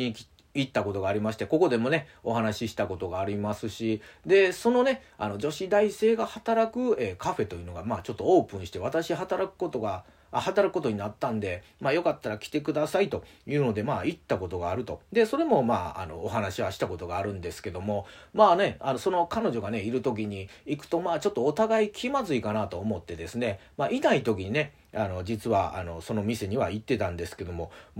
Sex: male